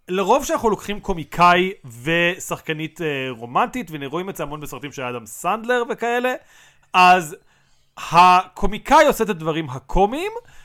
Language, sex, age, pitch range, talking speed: Hebrew, male, 30-49, 155-215 Hz, 130 wpm